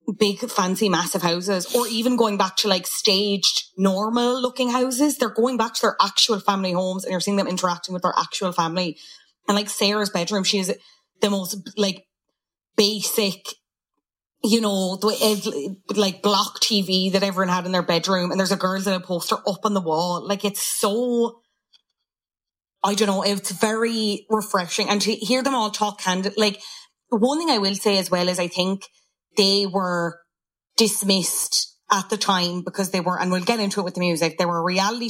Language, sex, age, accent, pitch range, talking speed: English, female, 20-39, Irish, 185-220 Hz, 190 wpm